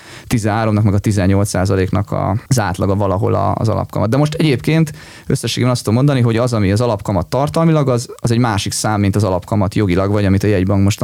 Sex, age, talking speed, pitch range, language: male, 20-39, 200 wpm, 105-135 Hz, Hungarian